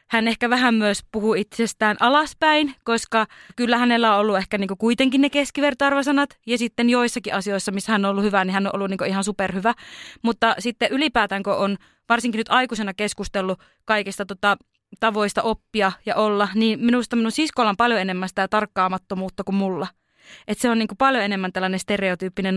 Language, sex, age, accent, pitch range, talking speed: Finnish, female, 20-39, native, 195-235 Hz, 180 wpm